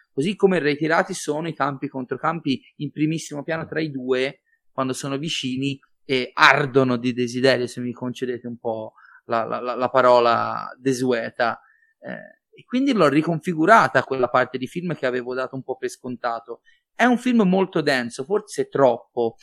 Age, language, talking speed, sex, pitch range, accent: 30-49, Italian, 165 wpm, male, 125-160 Hz, native